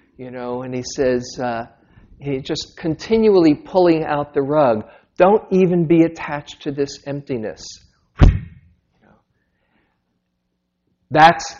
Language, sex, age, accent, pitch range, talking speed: English, male, 50-69, American, 115-145 Hz, 120 wpm